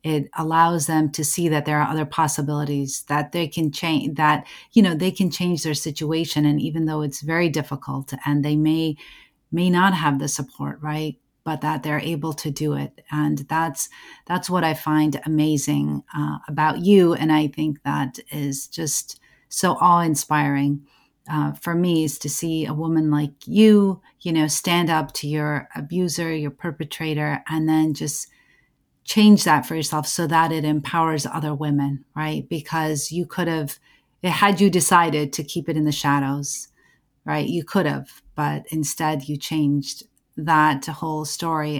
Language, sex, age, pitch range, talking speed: English, female, 40-59, 145-160 Hz, 170 wpm